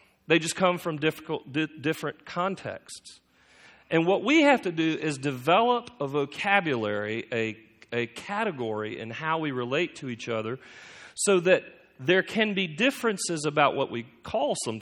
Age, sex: 40-59, male